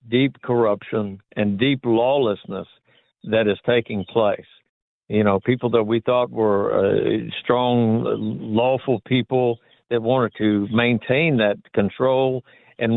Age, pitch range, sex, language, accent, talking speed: 60-79, 110-135 Hz, male, English, American, 125 wpm